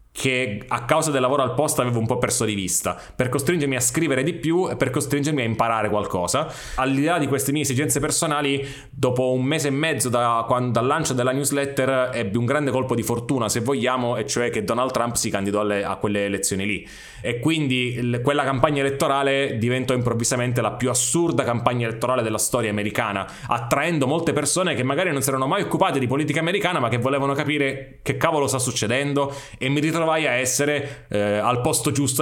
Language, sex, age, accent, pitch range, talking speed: Italian, male, 20-39, native, 115-145 Hz, 205 wpm